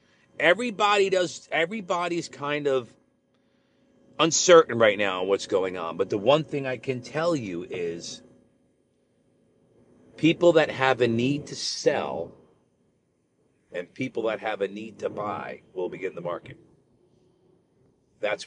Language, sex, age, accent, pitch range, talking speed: English, male, 40-59, American, 125-165 Hz, 135 wpm